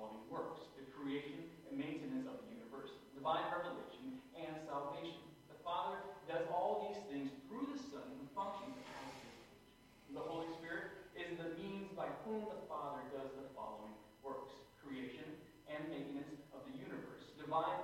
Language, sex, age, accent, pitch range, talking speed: English, male, 40-59, American, 145-220 Hz, 165 wpm